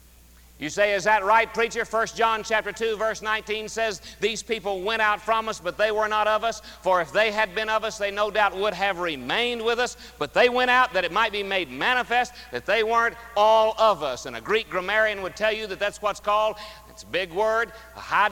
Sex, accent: male, American